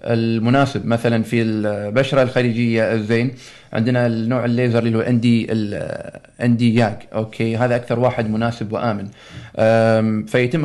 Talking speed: 115 wpm